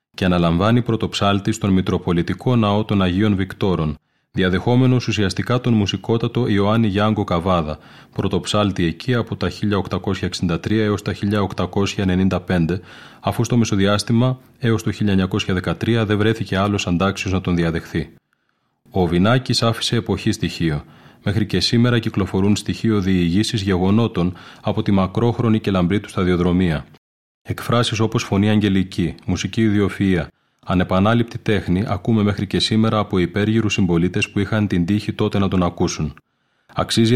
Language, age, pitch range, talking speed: Greek, 30-49, 90-110 Hz, 130 wpm